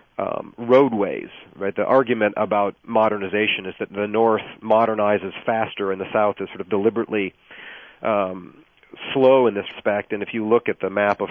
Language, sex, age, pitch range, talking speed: English, male, 40-59, 95-110 Hz, 175 wpm